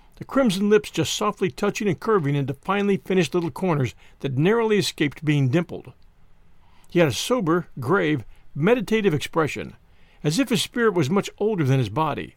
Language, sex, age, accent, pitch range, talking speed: English, male, 50-69, American, 140-200 Hz, 170 wpm